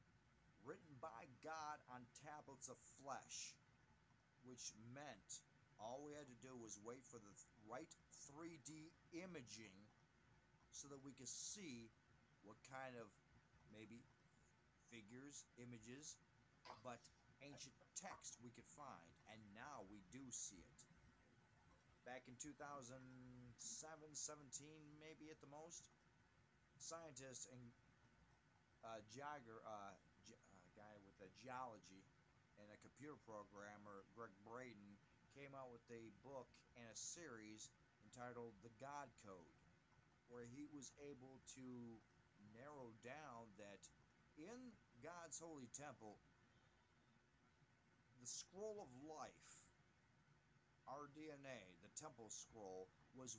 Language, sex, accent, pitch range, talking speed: English, male, American, 115-145 Hz, 115 wpm